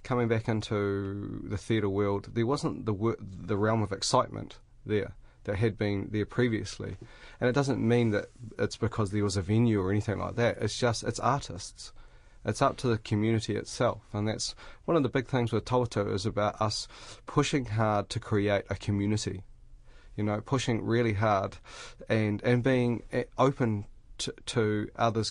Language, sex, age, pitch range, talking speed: English, male, 30-49, 105-120 Hz, 175 wpm